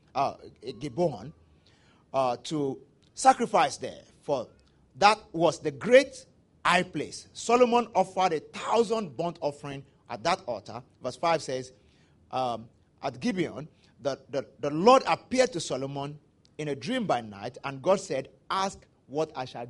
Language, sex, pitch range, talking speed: English, male, 130-190 Hz, 145 wpm